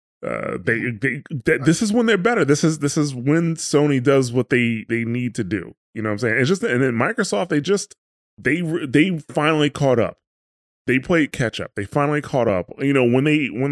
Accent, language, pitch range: American, English, 100-130 Hz